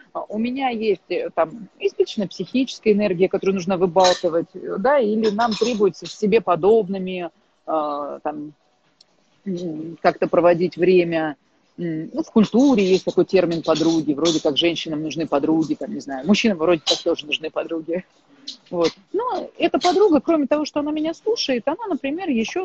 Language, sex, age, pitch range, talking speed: Russian, female, 30-49, 175-250 Hz, 145 wpm